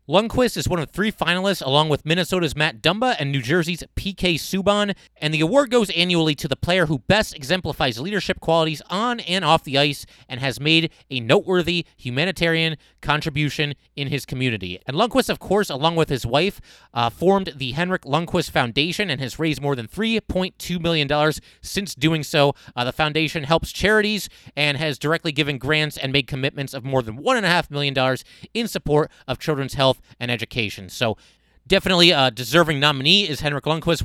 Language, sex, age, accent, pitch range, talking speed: English, male, 30-49, American, 135-175 Hz, 180 wpm